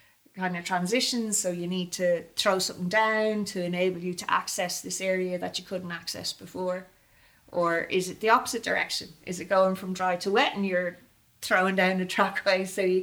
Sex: female